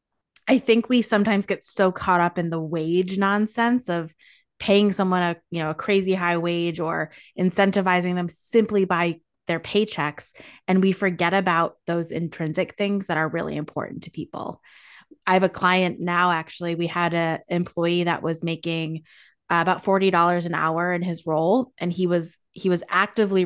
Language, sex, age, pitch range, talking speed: English, female, 20-39, 160-190 Hz, 175 wpm